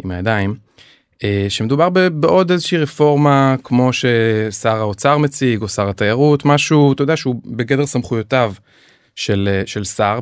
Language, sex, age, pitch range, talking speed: Hebrew, male, 20-39, 105-135 Hz, 130 wpm